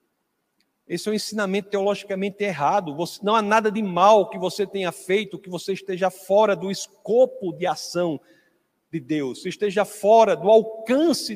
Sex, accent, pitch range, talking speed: male, Brazilian, 185-220 Hz, 165 wpm